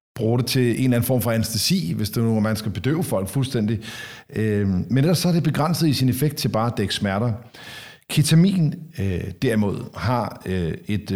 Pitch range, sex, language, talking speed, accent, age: 110-140 Hz, male, Danish, 200 wpm, native, 50-69